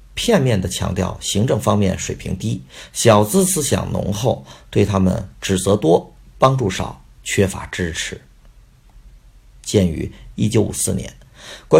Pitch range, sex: 95-115 Hz, male